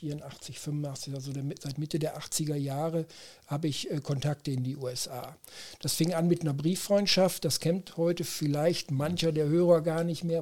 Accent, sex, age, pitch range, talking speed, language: German, male, 60-79, 145-170 Hz, 180 wpm, German